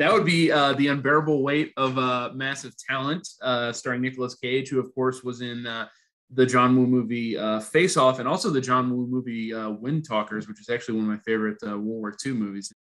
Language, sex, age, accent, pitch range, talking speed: English, male, 20-39, American, 115-140 Hz, 230 wpm